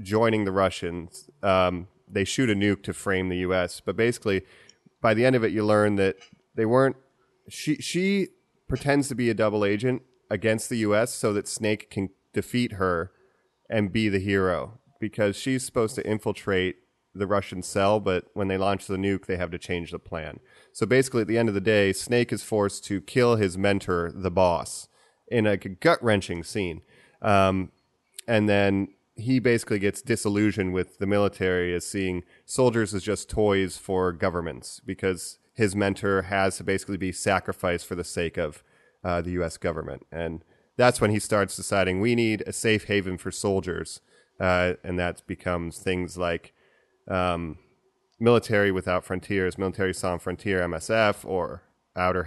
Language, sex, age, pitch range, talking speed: English, male, 30-49, 90-110 Hz, 170 wpm